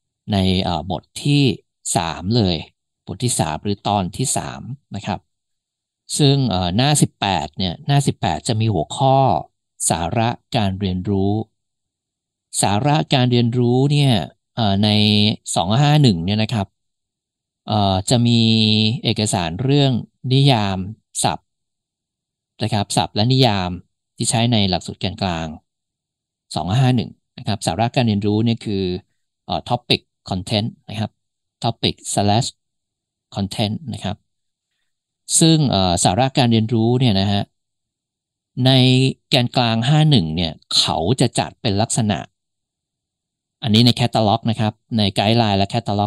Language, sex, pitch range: Thai, male, 95-120 Hz